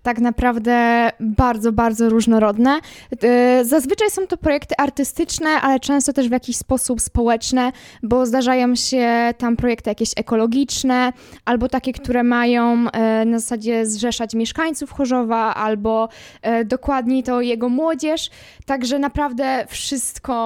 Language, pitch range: Polish, 230-260 Hz